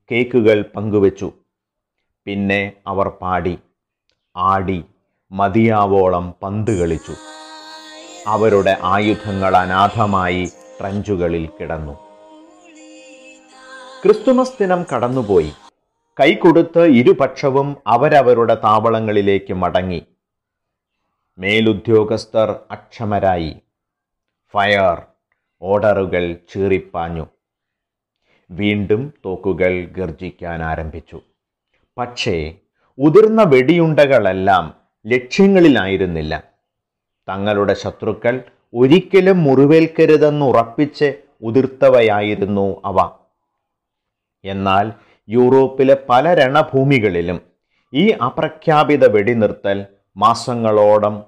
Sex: male